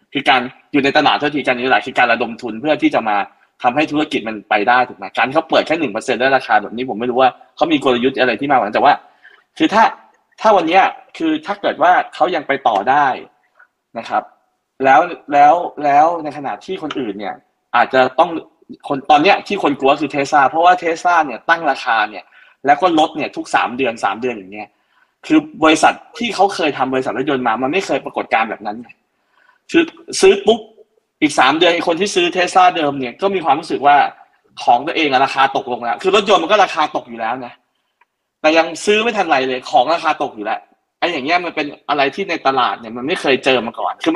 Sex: male